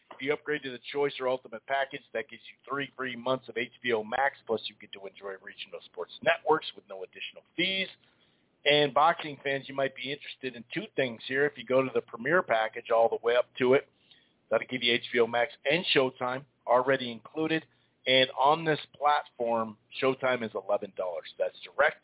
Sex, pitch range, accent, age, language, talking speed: male, 120-145 Hz, American, 40-59, English, 195 wpm